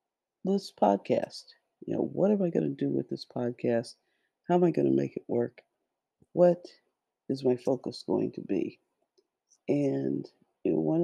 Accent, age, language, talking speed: American, 50-69, English, 165 wpm